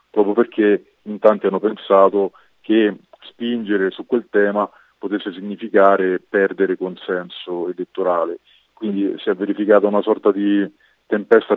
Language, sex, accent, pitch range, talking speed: Italian, male, native, 95-105 Hz, 125 wpm